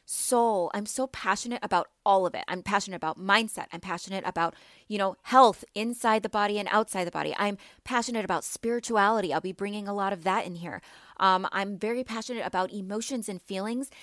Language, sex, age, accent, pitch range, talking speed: English, female, 20-39, American, 190-230 Hz, 195 wpm